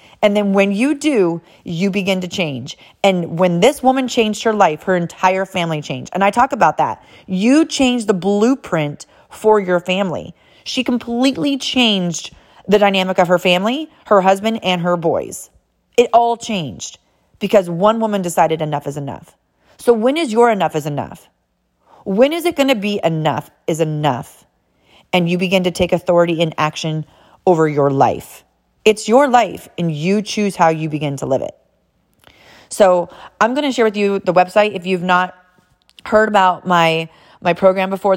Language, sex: English, female